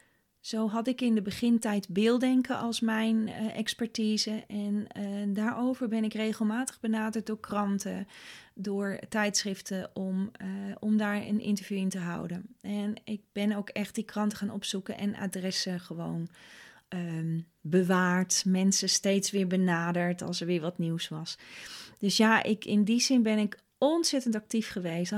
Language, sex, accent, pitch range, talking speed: Dutch, female, Dutch, 190-225 Hz, 155 wpm